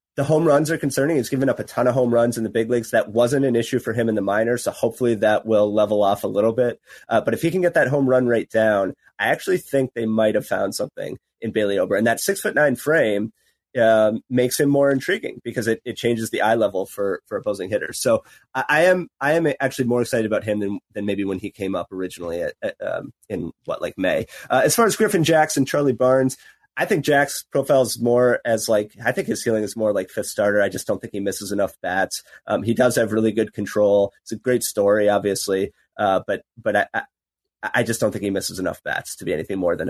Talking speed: 255 wpm